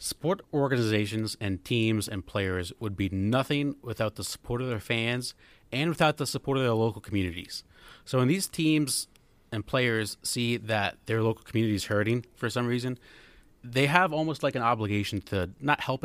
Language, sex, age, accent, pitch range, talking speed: English, male, 30-49, American, 105-130 Hz, 180 wpm